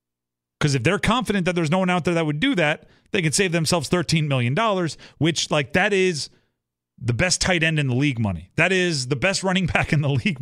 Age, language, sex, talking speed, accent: 30-49, English, male, 235 wpm, American